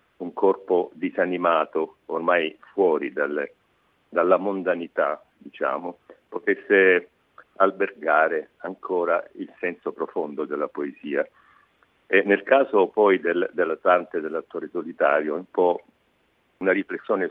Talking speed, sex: 105 wpm, male